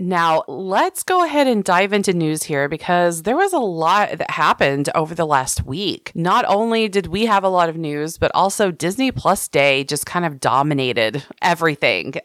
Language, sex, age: English, female, 30-49